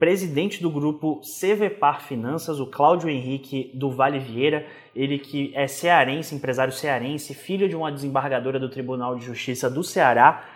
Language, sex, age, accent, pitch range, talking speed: Portuguese, male, 20-39, Brazilian, 135-185 Hz, 155 wpm